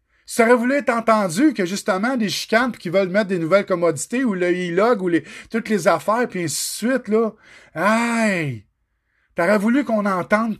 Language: French